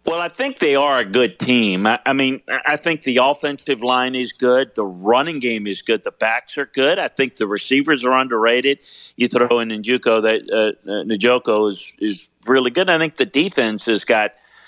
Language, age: English, 40-59